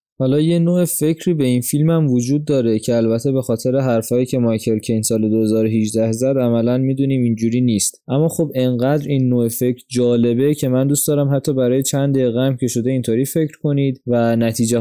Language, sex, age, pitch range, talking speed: Persian, male, 20-39, 115-140 Hz, 190 wpm